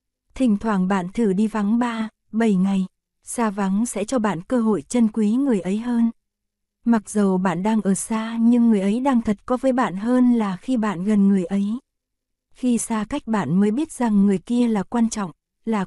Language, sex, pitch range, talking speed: Vietnamese, female, 195-235 Hz, 205 wpm